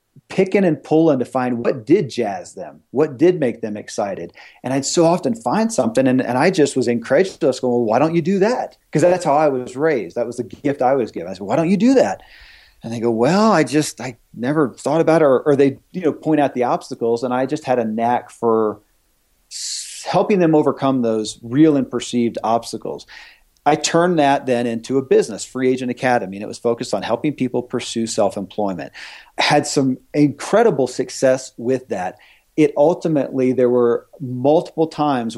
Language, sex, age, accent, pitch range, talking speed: English, male, 40-59, American, 120-155 Hz, 205 wpm